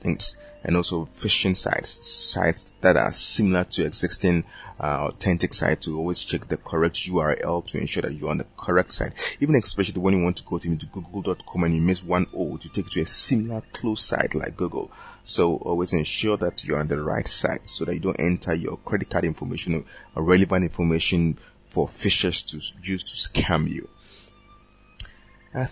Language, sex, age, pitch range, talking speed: English, male, 30-49, 85-105 Hz, 185 wpm